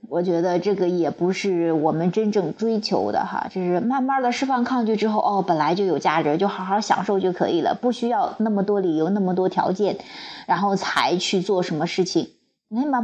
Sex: female